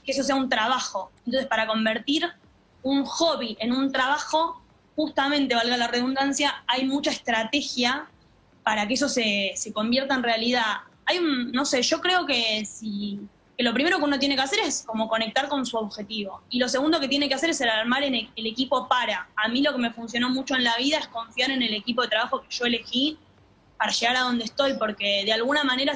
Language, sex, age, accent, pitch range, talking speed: Spanish, female, 20-39, Argentinian, 225-280 Hz, 215 wpm